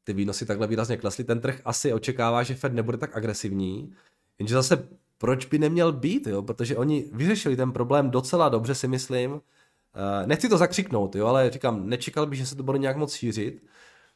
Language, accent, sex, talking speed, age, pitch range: Czech, native, male, 190 wpm, 20-39, 100-130 Hz